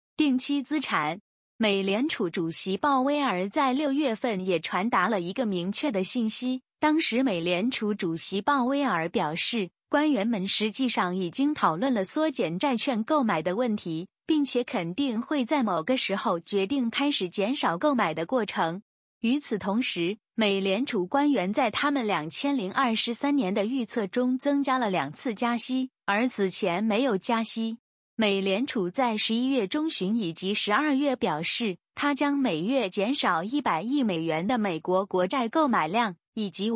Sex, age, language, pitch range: female, 20-39, Chinese, 200-275 Hz